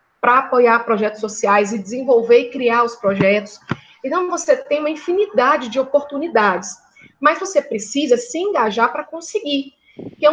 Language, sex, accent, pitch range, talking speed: Portuguese, female, Brazilian, 225-300 Hz, 145 wpm